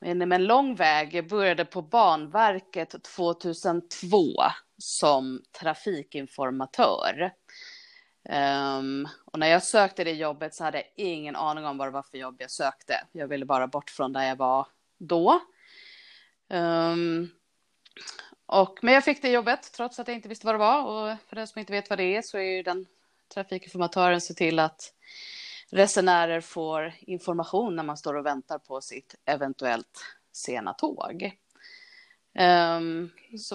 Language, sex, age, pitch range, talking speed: Swedish, female, 30-49, 155-215 Hz, 155 wpm